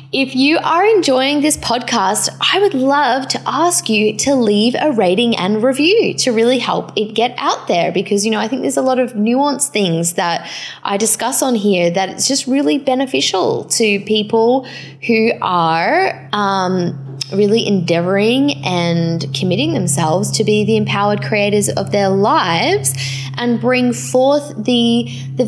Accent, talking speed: Australian, 160 wpm